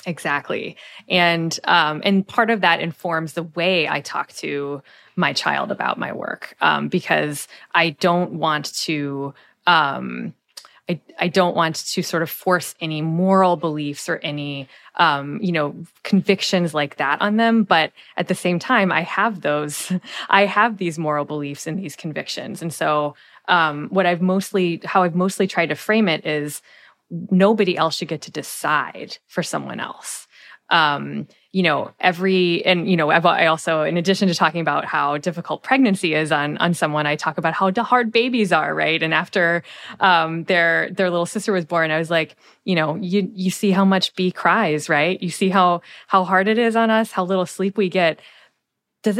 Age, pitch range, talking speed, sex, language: 20-39, 160-195 Hz, 185 wpm, female, English